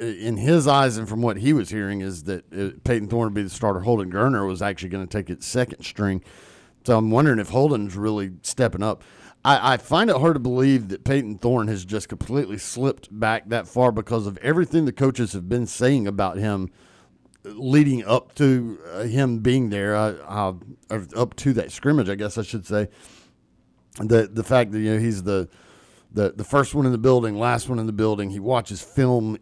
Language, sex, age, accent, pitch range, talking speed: English, male, 40-59, American, 100-125 Hz, 210 wpm